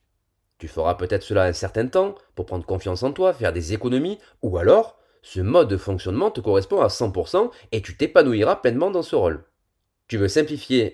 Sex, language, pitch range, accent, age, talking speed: male, French, 95-135 Hz, French, 30-49, 190 wpm